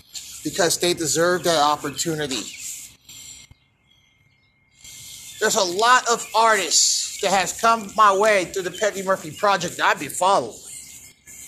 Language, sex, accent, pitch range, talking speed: English, male, American, 160-220 Hz, 125 wpm